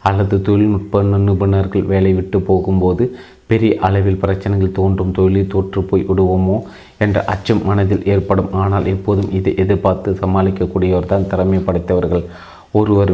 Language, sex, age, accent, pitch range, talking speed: Tamil, male, 30-49, native, 95-100 Hz, 120 wpm